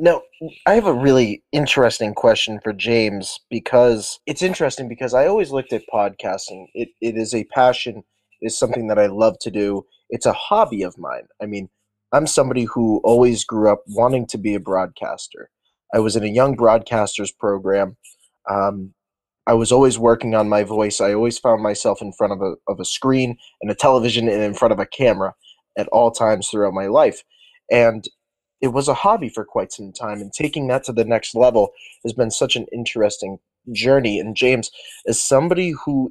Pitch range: 105-135 Hz